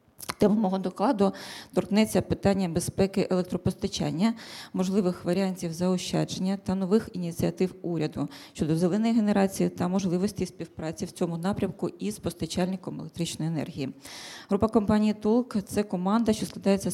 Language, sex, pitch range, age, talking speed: Ukrainian, female, 175-200 Hz, 20-39, 120 wpm